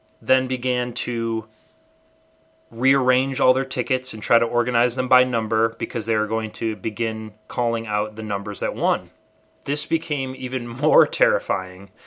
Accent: American